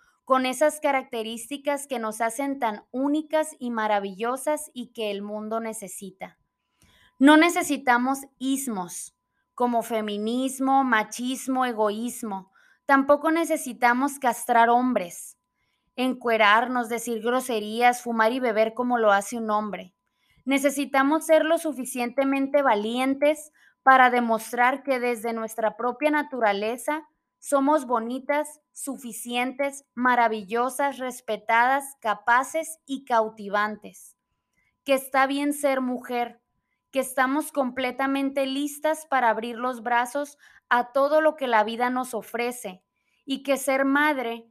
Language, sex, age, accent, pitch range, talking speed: Spanish, female, 20-39, Mexican, 230-275 Hz, 110 wpm